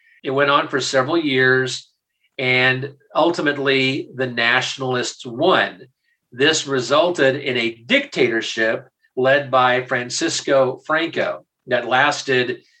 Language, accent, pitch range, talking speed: English, American, 120-150 Hz, 105 wpm